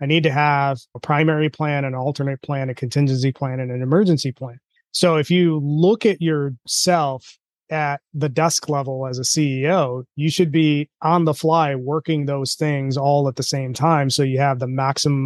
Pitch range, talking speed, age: 140-165 Hz, 195 wpm, 30-49